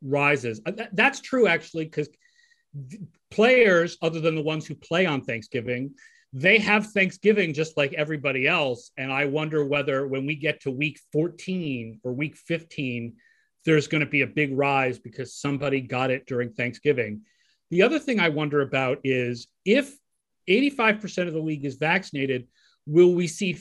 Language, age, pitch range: English, 40-59, 135-180 Hz